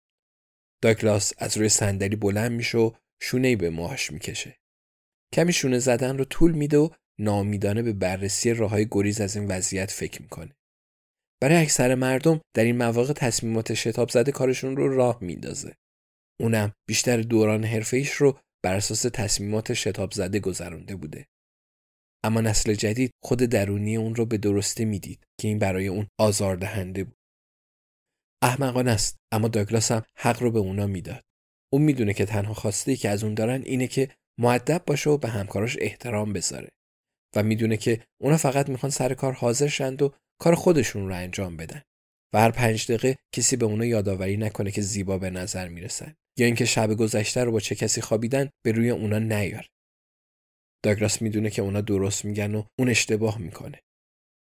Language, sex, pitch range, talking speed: Persian, male, 100-125 Hz, 170 wpm